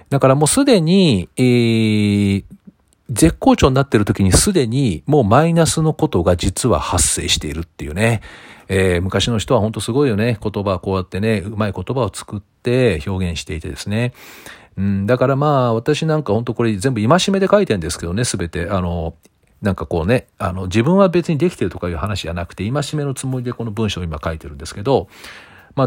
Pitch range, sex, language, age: 95-135 Hz, male, Japanese, 40-59